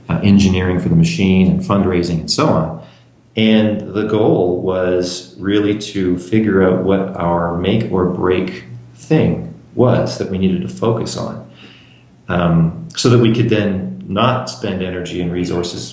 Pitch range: 90-110 Hz